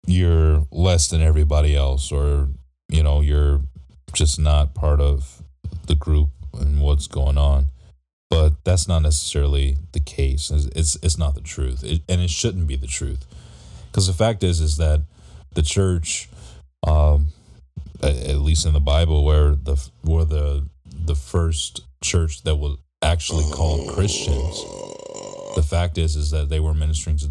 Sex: male